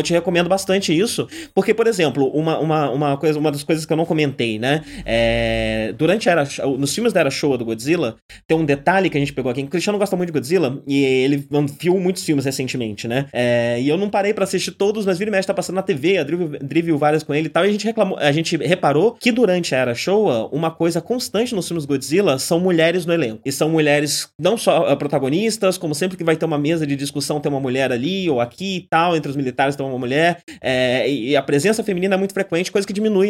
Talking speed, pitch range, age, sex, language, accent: 250 wpm, 140-195 Hz, 20-39, male, Portuguese, Brazilian